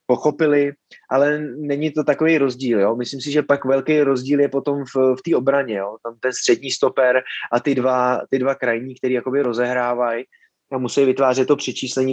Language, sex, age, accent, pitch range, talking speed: Czech, male, 20-39, native, 120-130 Hz, 185 wpm